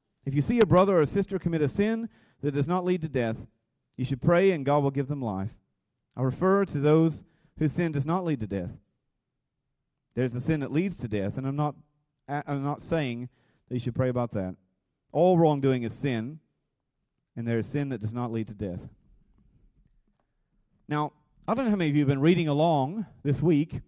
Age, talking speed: 30-49, 210 wpm